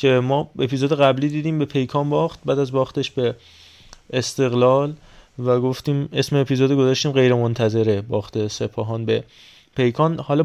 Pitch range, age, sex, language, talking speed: 125-150 Hz, 20-39, male, Persian, 140 wpm